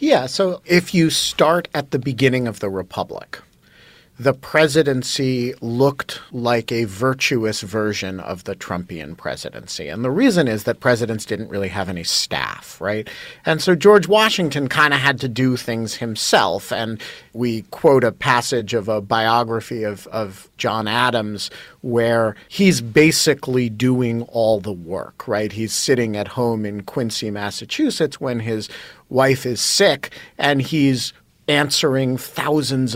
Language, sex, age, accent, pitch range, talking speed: English, male, 40-59, American, 115-145 Hz, 145 wpm